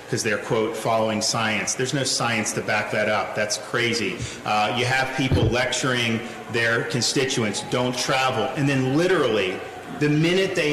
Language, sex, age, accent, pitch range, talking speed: English, male, 40-59, American, 115-140 Hz, 160 wpm